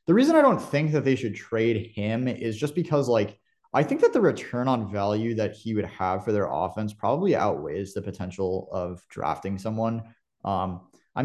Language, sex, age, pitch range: English, male, 20-39, 100-130 Hz